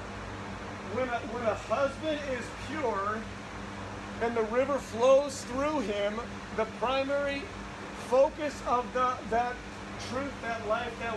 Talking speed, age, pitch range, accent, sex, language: 115 wpm, 40-59, 210-245 Hz, American, male, English